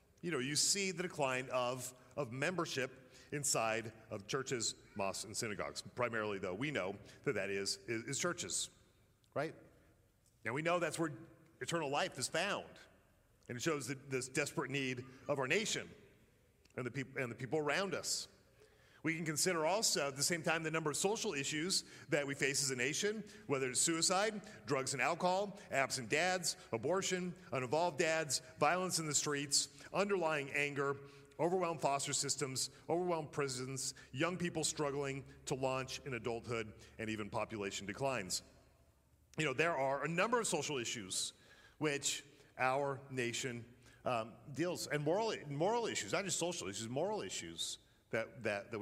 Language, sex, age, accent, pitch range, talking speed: English, male, 40-59, American, 125-165 Hz, 160 wpm